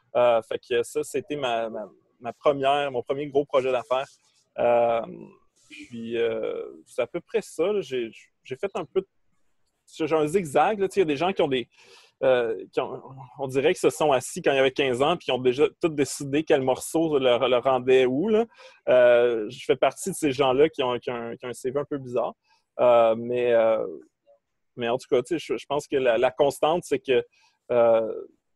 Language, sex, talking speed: French, male, 210 wpm